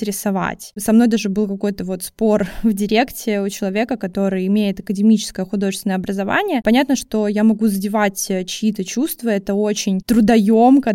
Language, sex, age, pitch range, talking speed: Russian, female, 20-39, 210-255 Hz, 140 wpm